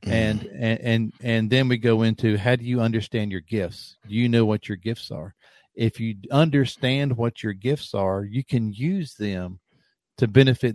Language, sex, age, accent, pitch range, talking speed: English, male, 50-69, American, 100-125 Hz, 190 wpm